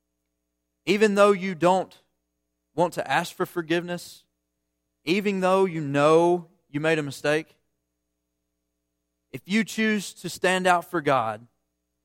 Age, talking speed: 30-49, 125 wpm